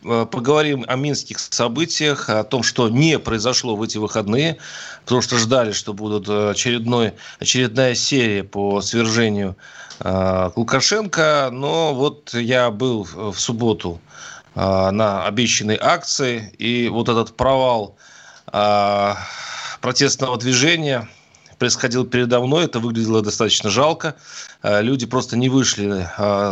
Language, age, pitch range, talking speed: Russian, 30-49, 110-140 Hz, 115 wpm